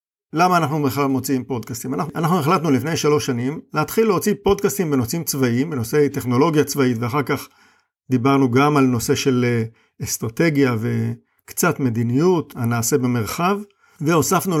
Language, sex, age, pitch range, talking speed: Hebrew, male, 50-69, 130-155 Hz, 130 wpm